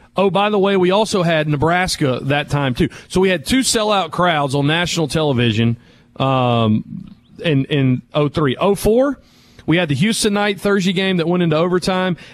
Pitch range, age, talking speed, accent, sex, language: 140-190 Hz, 40-59, 175 wpm, American, male, English